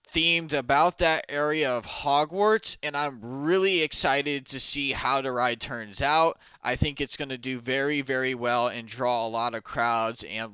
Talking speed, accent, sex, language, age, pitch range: 180 wpm, American, male, English, 20-39, 125-160 Hz